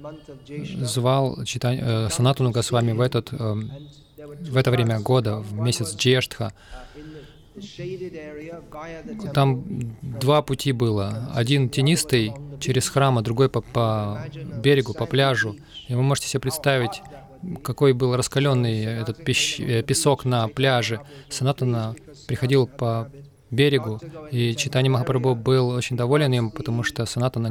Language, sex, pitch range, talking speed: Russian, male, 120-145 Hz, 115 wpm